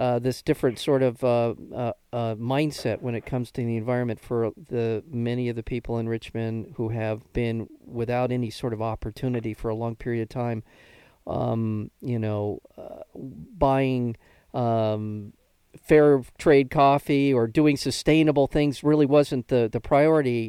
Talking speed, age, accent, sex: 160 wpm, 50-69, American, male